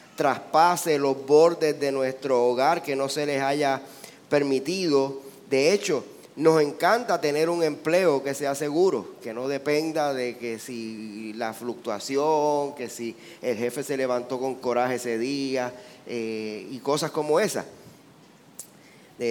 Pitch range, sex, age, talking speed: 130-165 Hz, male, 30-49, 145 wpm